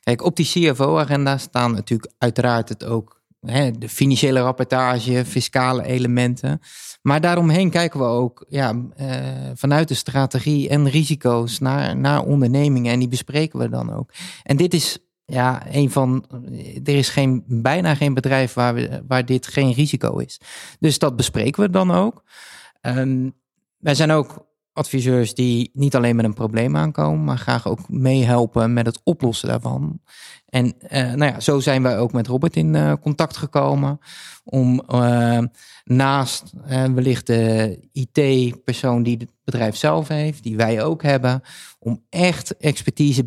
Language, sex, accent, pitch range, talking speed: Dutch, male, Dutch, 120-150 Hz, 155 wpm